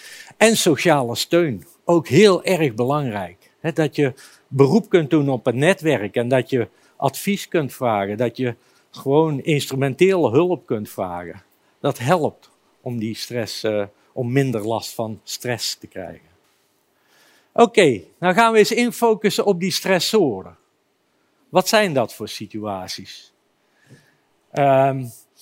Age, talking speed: 50-69, 130 wpm